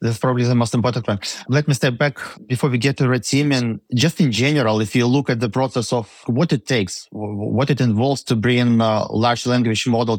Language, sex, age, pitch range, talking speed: English, male, 20-39, 110-125 Hz, 230 wpm